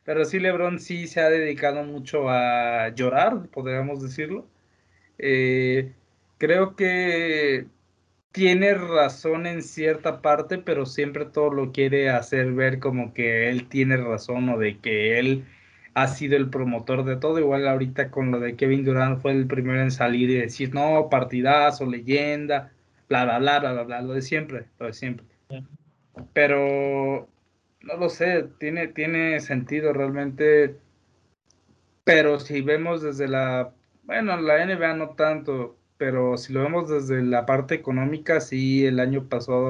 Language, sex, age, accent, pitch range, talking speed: Spanish, male, 20-39, Mexican, 125-155 Hz, 150 wpm